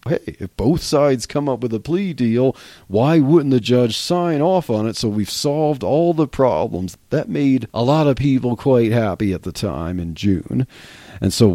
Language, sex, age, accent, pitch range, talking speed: English, male, 40-59, American, 100-130 Hz, 205 wpm